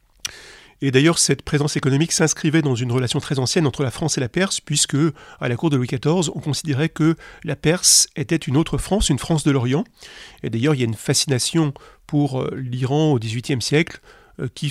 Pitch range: 135-165 Hz